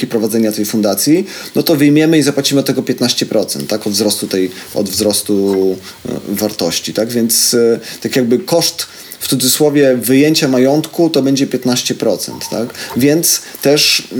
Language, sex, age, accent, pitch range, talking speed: Polish, male, 40-59, native, 120-140 Hz, 140 wpm